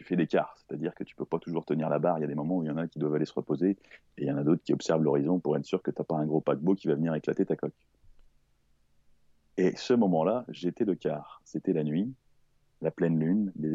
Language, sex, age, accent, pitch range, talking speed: French, male, 30-49, French, 75-95 Hz, 290 wpm